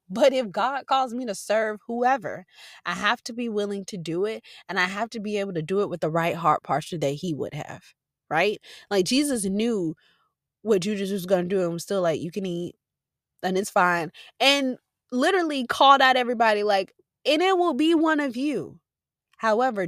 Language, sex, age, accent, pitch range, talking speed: English, female, 20-39, American, 185-275 Hz, 205 wpm